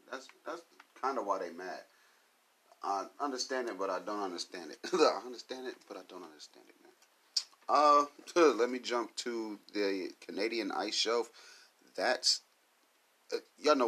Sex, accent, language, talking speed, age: male, American, English, 160 wpm, 30-49